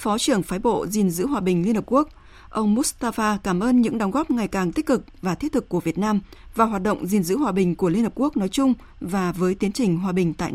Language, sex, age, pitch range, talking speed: Vietnamese, female, 20-39, 190-240 Hz, 275 wpm